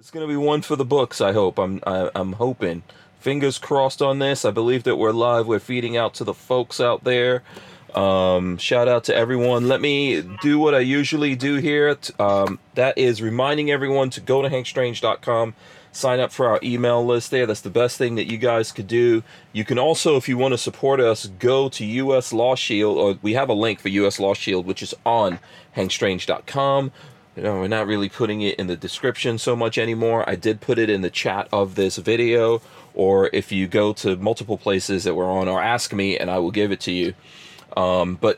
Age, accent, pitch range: 30-49, American, 100-130 Hz